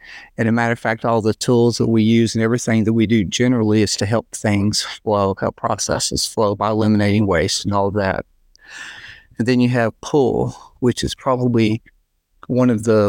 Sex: male